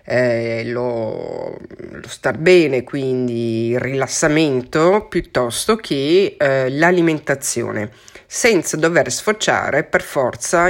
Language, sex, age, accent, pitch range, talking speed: Italian, female, 40-59, native, 125-175 Hz, 95 wpm